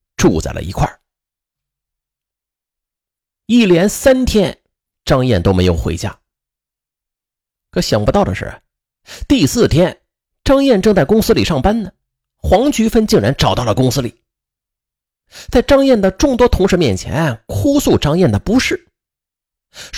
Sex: male